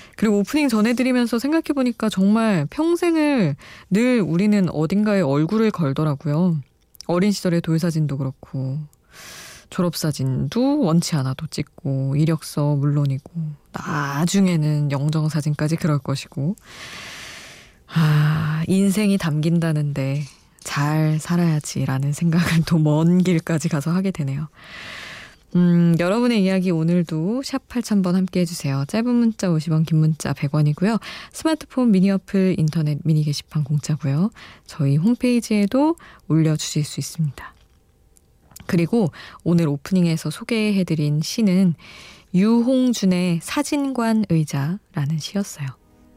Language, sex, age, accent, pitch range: Korean, female, 20-39, native, 150-200 Hz